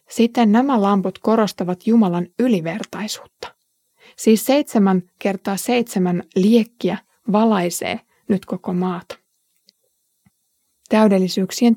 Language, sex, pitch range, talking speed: Finnish, female, 185-235 Hz, 80 wpm